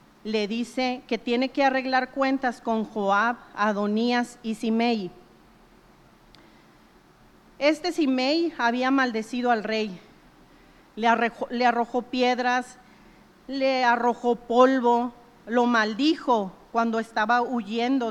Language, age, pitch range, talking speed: Spanish, 40-59, 215-260 Hz, 95 wpm